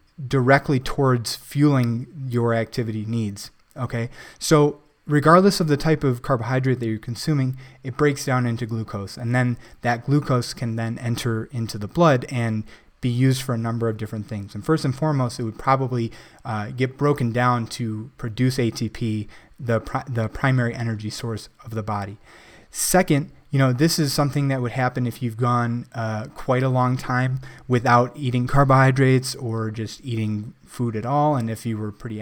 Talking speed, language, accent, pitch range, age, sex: 175 wpm, English, American, 110-135 Hz, 20-39, male